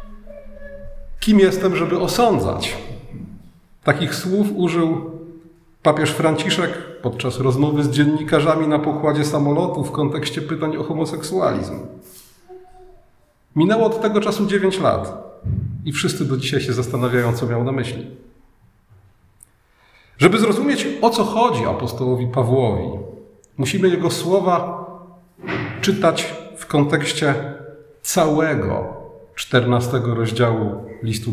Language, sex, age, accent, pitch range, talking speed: Polish, male, 40-59, native, 120-175 Hz, 105 wpm